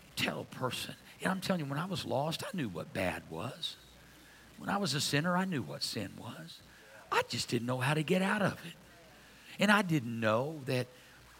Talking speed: 215 wpm